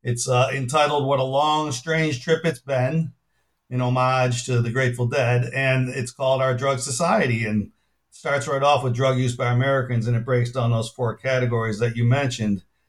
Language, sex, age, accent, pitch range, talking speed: English, male, 50-69, American, 120-145 Hz, 195 wpm